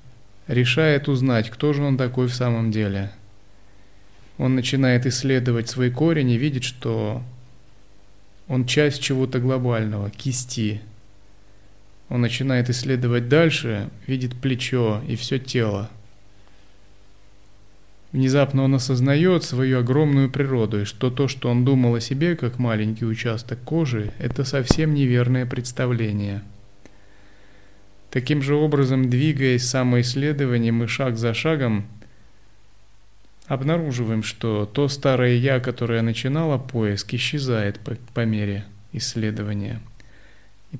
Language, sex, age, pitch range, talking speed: Russian, male, 30-49, 100-130 Hz, 110 wpm